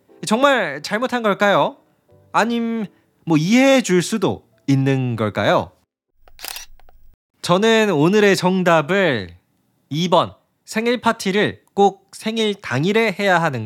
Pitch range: 135-210 Hz